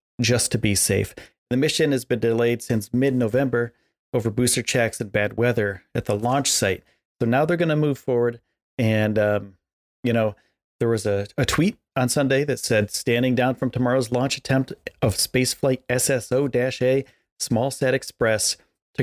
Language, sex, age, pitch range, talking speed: English, male, 30-49, 110-130 Hz, 165 wpm